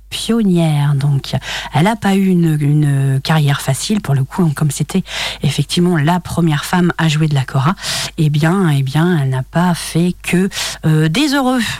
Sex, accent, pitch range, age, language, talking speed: female, French, 160-215 Hz, 40-59, French, 195 wpm